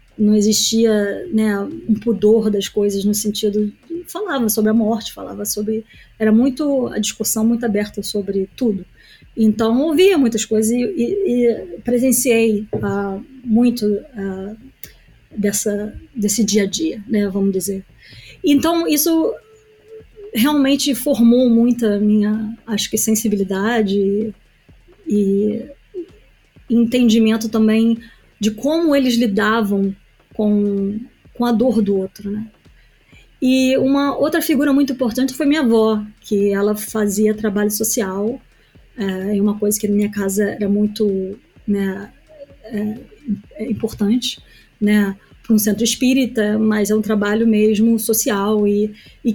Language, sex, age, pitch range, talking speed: Portuguese, female, 20-39, 210-240 Hz, 130 wpm